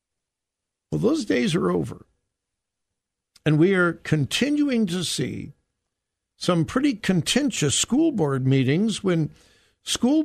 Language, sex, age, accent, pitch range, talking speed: English, male, 60-79, American, 135-215 Hz, 105 wpm